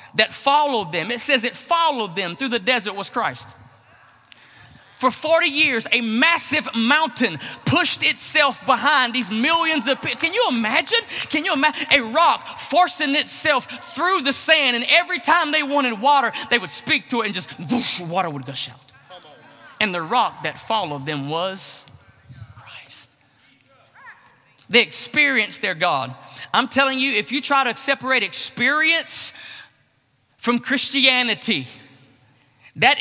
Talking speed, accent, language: 145 wpm, American, English